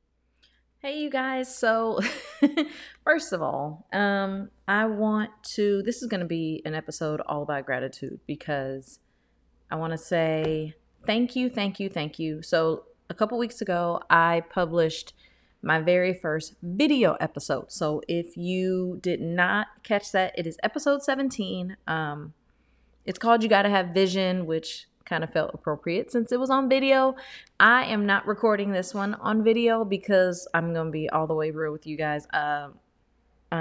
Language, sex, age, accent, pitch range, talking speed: English, female, 30-49, American, 160-215 Hz, 165 wpm